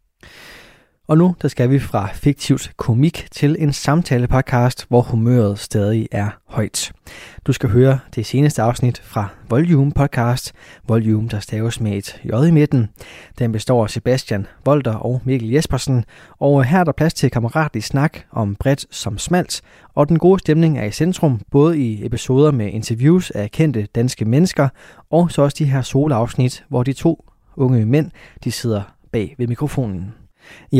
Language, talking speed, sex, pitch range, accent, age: Danish, 170 wpm, male, 110-145 Hz, native, 20-39